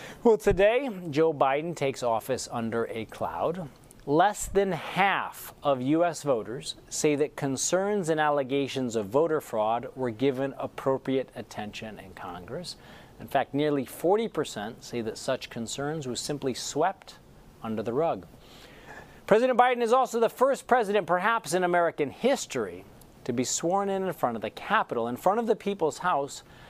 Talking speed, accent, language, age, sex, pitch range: 155 wpm, American, English, 40-59, male, 130-185 Hz